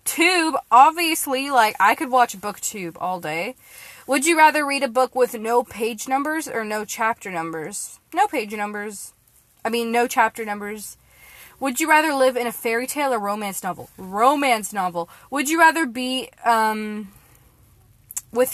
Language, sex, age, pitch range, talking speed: English, female, 20-39, 185-265 Hz, 160 wpm